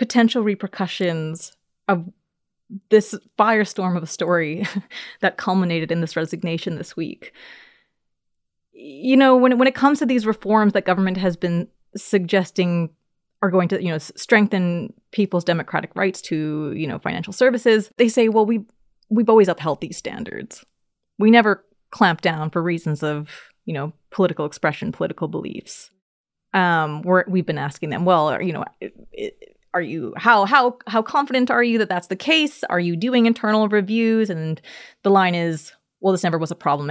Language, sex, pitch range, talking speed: English, female, 175-230 Hz, 170 wpm